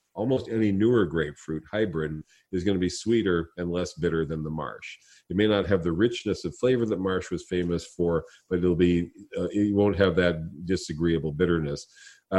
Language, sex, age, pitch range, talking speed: English, male, 40-59, 80-100 Hz, 190 wpm